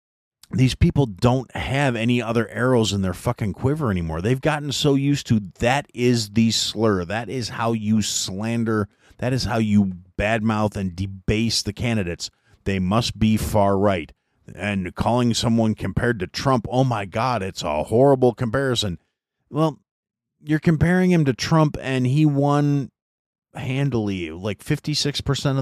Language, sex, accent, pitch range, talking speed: English, male, American, 100-125 Hz, 150 wpm